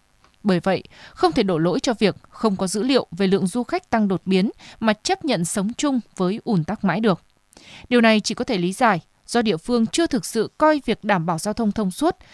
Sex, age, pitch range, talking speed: female, 20-39, 195-250 Hz, 245 wpm